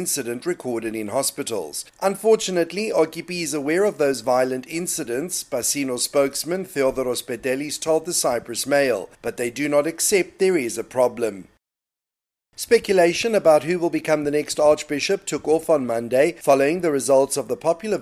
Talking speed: 155 wpm